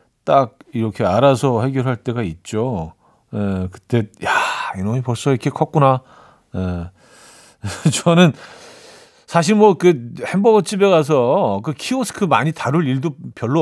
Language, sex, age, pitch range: Korean, male, 40-59, 125-170 Hz